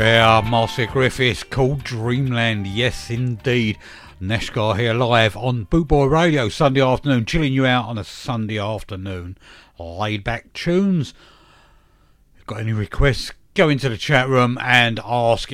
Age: 50-69